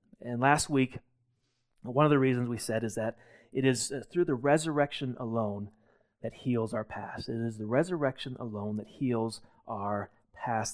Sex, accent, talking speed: male, American, 170 wpm